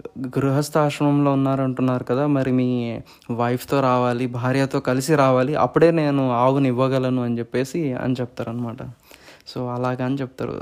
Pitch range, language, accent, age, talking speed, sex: 125-140 Hz, English, Indian, 20-39, 130 wpm, male